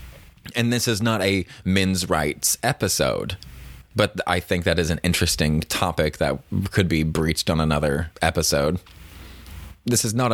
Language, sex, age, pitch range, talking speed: English, male, 20-39, 80-105 Hz, 150 wpm